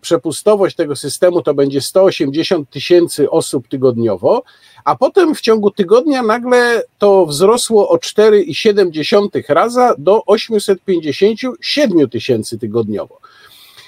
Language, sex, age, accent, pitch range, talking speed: Polish, male, 50-69, native, 160-230 Hz, 105 wpm